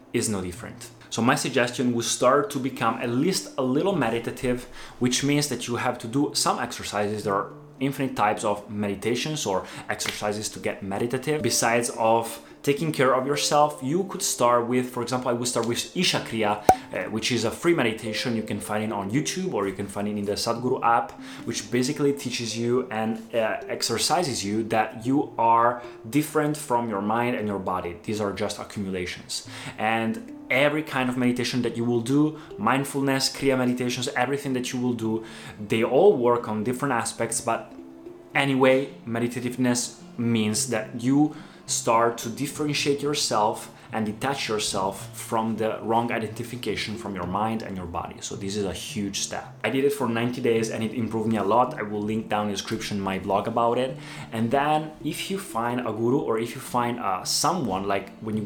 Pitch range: 110-130 Hz